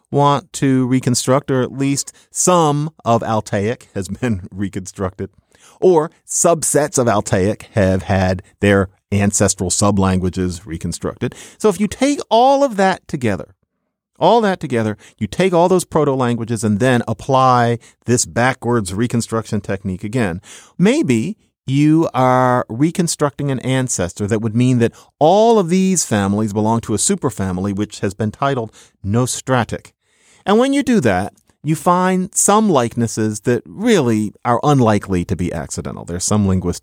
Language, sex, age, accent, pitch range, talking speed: English, male, 50-69, American, 100-140 Hz, 145 wpm